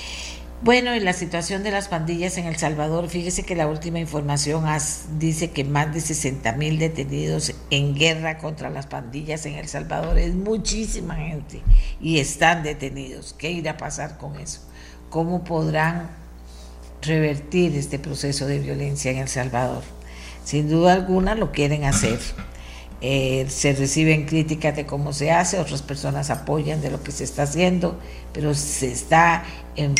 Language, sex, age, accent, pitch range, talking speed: Spanish, female, 50-69, American, 130-165 Hz, 160 wpm